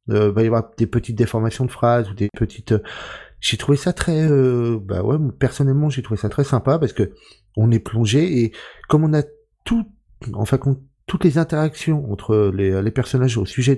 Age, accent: 30-49, French